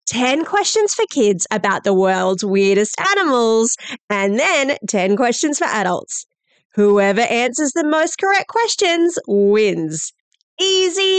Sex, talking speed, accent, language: female, 125 wpm, Australian, English